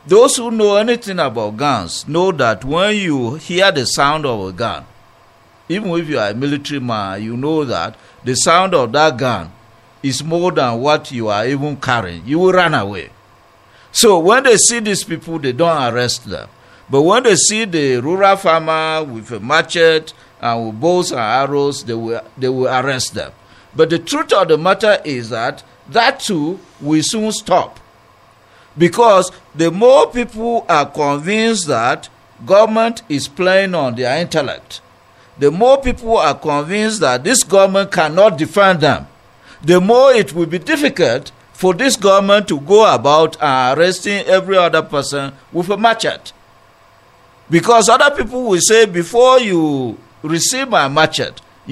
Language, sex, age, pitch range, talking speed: English, male, 50-69, 140-205 Hz, 160 wpm